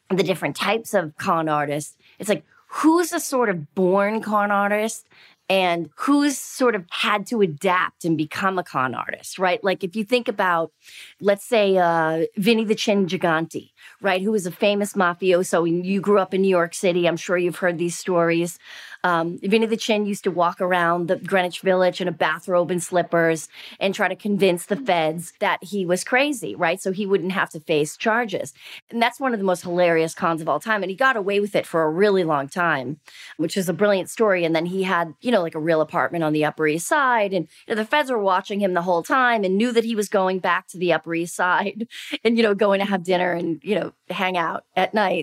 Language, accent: English, American